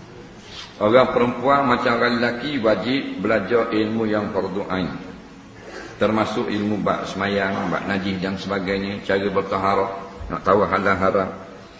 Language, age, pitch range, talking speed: English, 50-69, 105-120 Hz, 120 wpm